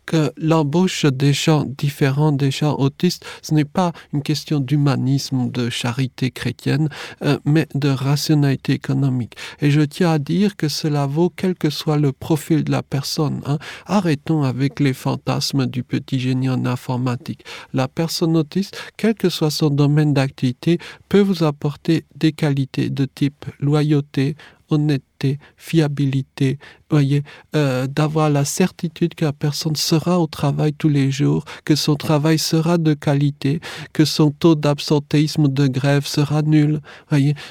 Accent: French